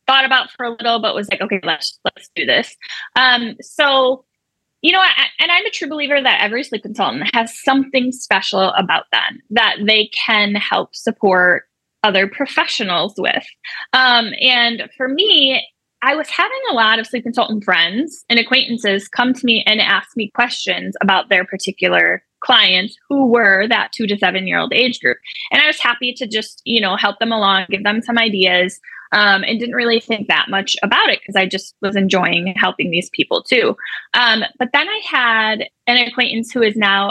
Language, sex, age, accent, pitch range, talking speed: English, female, 10-29, American, 205-265 Hz, 190 wpm